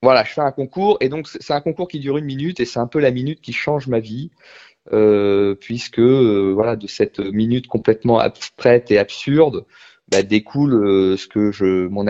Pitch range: 100-135 Hz